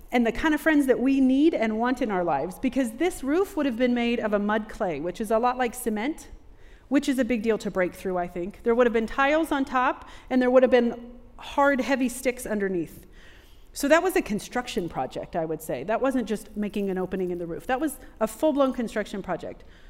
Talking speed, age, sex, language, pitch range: 240 wpm, 30-49, female, English, 200-260 Hz